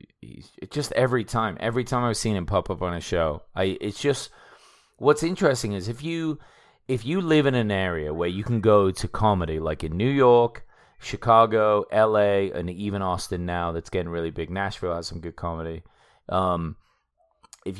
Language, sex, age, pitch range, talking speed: English, male, 30-49, 95-125 Hz, 180 wpm